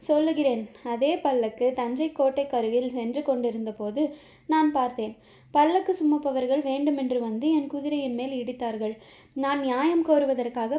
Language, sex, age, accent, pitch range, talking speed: Tamil, female, 20-39, native, 250-300 Hz, 120 wpm